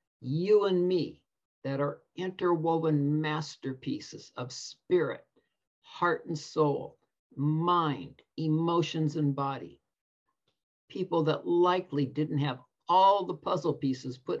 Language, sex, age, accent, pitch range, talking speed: English, male, 60-79, American, 140-170 Hz, 110 wpm